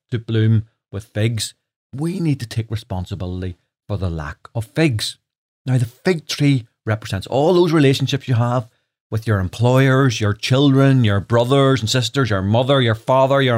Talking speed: 170 wpm